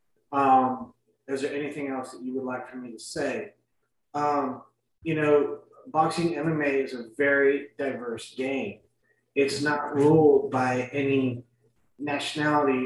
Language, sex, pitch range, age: English, male, 130-150 Hz, 30-49